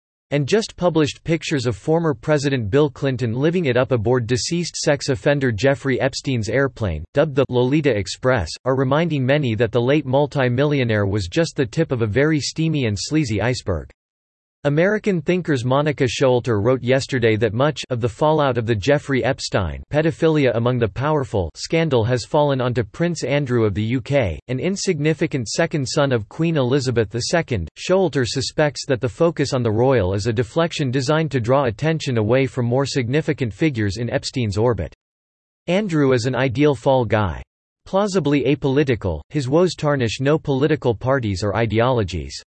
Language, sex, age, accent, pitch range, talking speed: English, male, 40-59, American, 115-150 Hz, 165 wpm